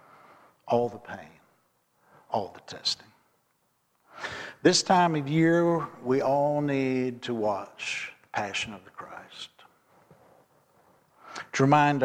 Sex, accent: male, American